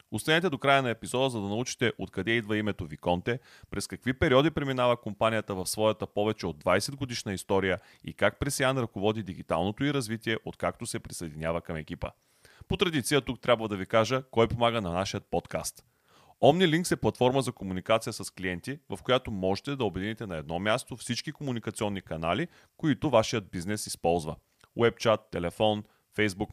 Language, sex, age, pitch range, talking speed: Bulgarian, male, 30-49, 95-130 Hz, 165 wpm